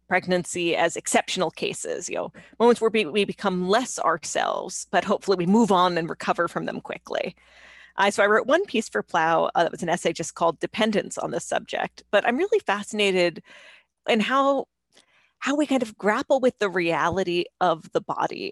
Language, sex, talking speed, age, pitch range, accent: English, female, 185 wpm, 30-49, 175-220 Hz, American